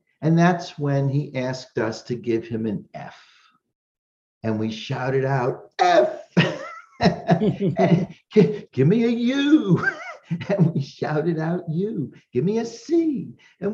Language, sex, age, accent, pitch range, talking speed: English, male, 50-69, American, 155-200 Hz, 130 wpm